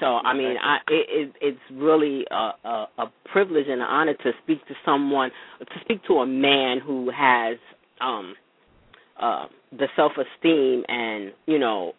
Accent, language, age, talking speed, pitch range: American, English, 40-59, 145 wpm, 125-160 Hz